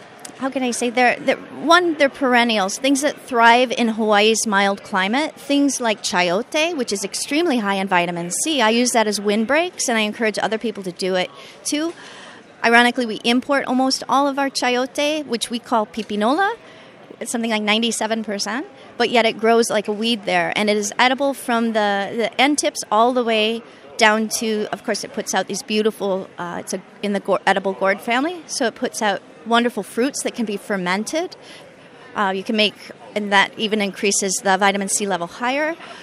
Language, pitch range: English, 200-245 Hz